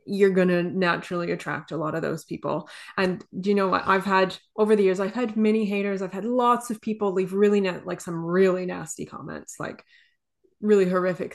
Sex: female